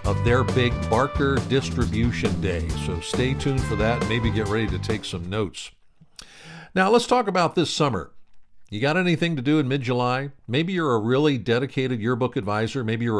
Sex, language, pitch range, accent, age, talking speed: male, English, 105-140 Hz, American, 60-79, 180 wpm